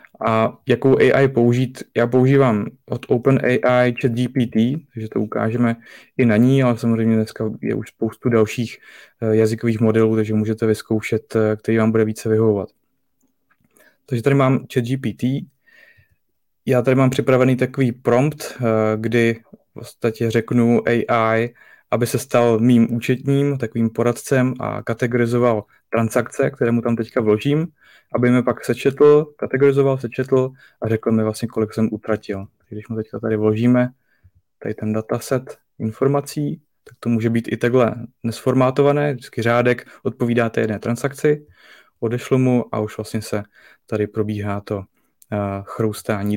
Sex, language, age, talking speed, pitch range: male, Czech, 20-39, 140 wpm, 110-130 Hz